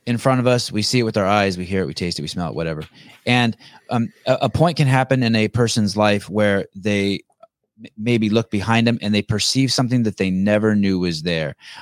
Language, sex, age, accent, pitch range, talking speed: English, male, 30-49, American, 100-125 Hz, 240 wpm